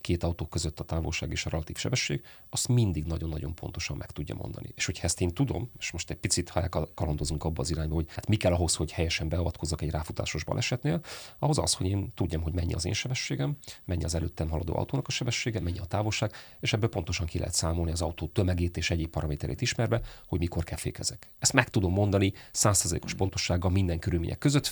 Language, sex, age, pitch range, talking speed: Hungarian, male, 40-59, 85-110 Hz, 210 wpm